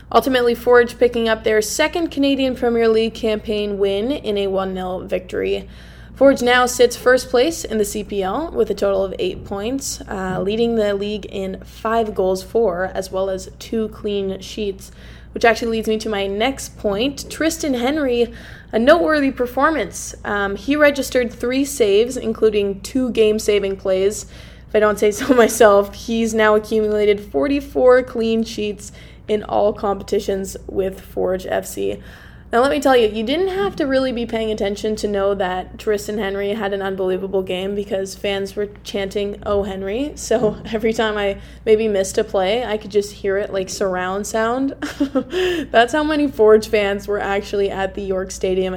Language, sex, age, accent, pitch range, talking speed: English, female, 20-39, American, 195-240 Hz, 170 wpm